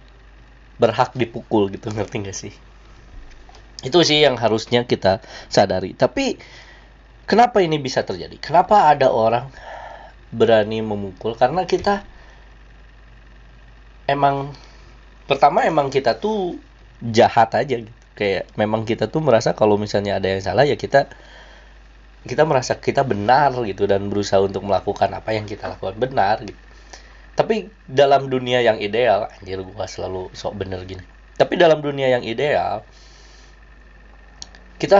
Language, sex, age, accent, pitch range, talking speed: Indonesian, male, 20-39, native, 95-135 Hz, 130 wpm